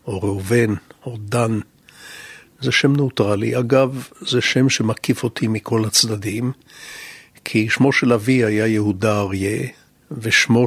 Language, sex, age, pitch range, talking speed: Hebrew, male, 60-79, 110-130 Hz, 125 wpm